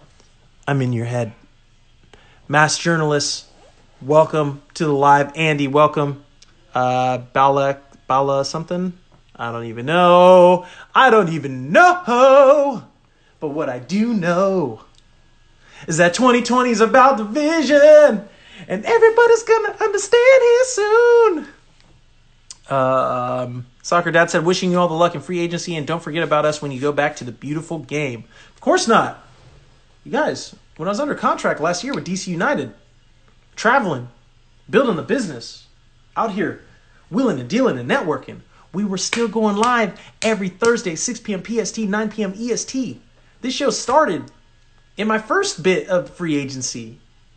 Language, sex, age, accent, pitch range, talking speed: English, male, 30-49, American, 145-235 Hz, 150 wpm